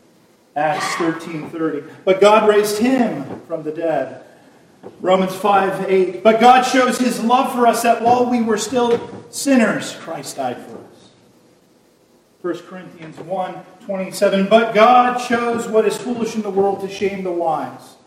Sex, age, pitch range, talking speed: male, 40-59, 135-195 Hz, 160 wpm